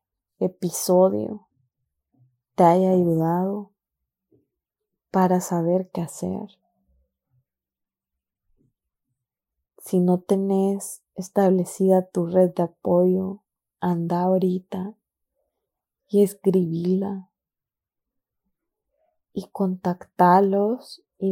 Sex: female